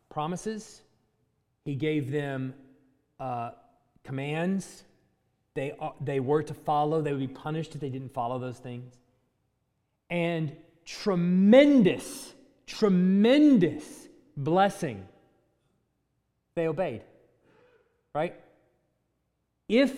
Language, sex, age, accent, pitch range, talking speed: English, male, 30-49, American, 135-210 Hz, 90 wpm